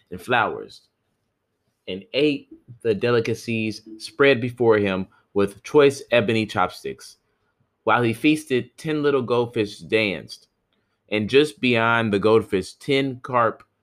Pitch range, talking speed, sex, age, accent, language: 100-120 Hz, 115 wpm, male, 20-39, American, English